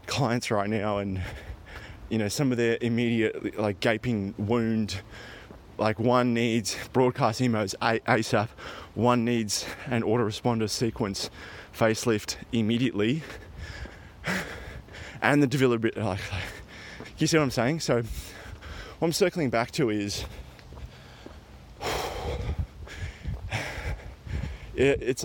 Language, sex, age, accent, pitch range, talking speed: English, male, 20-39, Australian, 100-125 Hz, 105 wpm